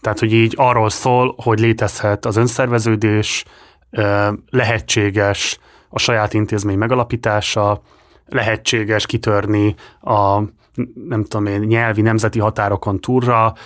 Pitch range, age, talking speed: 105-120 Hz, 20-39, 105 wpm